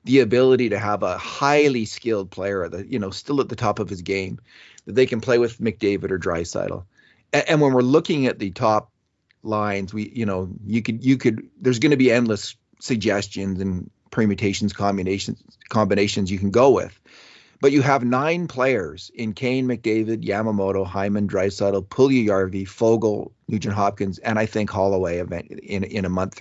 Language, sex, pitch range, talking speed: English, male, 95-120 Hz, 180 wpm